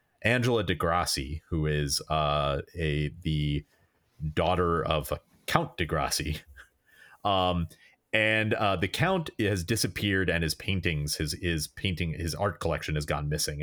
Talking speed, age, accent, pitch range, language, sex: 130 wpm, 30-49, American, 75-95 Hz, English, male